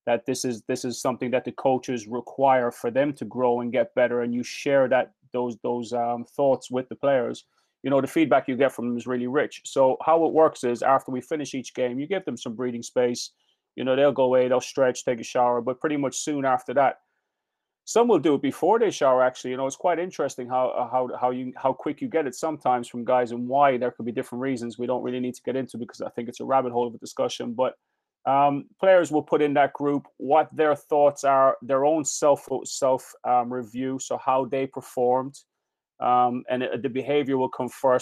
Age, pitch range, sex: 30-49, 125-135 Hz, male